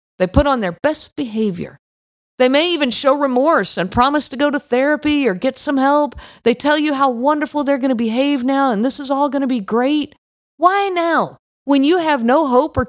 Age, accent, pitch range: 50-69, American, 210-280 Hz